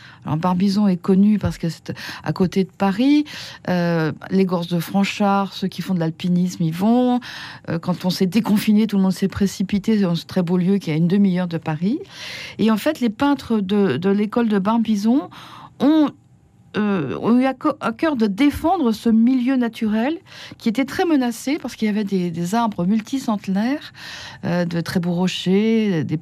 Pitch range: 185-240 Hz